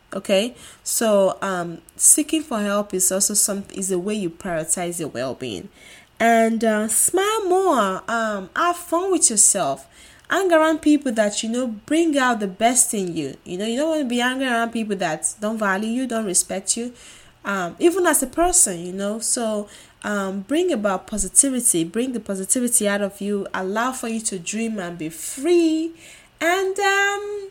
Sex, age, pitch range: female, 10-29, 195-295 Hz